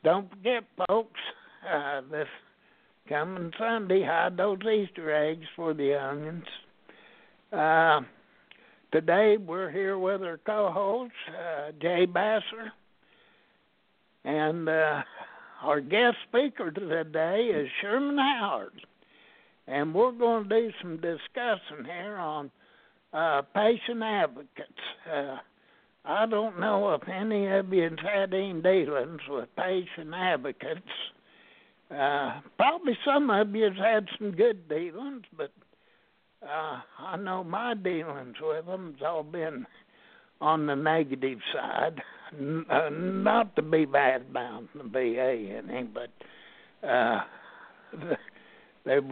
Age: 60-79